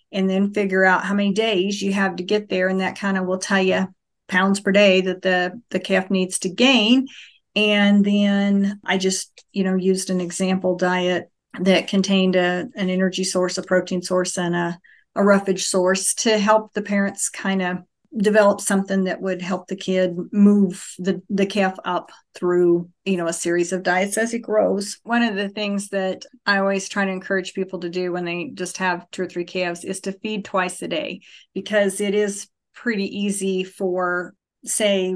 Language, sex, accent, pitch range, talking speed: English, female, American, 180-200 Hz, 195 wpm